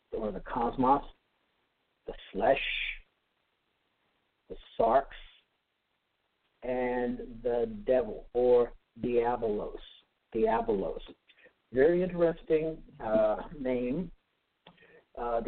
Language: English